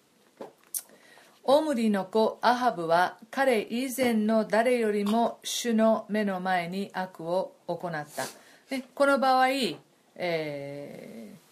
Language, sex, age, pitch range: Japanese, female, 50-69, 175-240 Hz